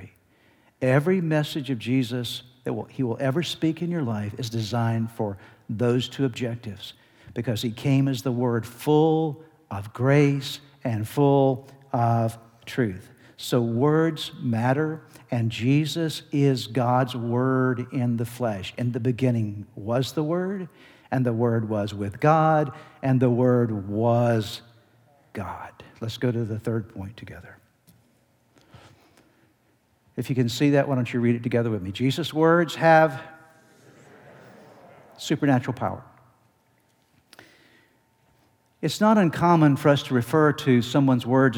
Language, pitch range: English, 120-150 Hz